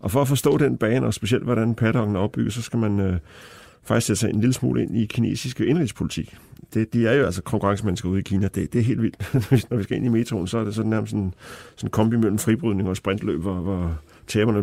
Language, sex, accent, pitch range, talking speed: Danish, male, native, 100-120 Hz, 250 wpm